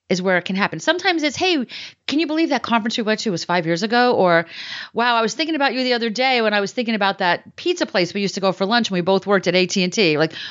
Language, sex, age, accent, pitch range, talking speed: English, female, 40-59, American, 180-250 Hz, 295 wpm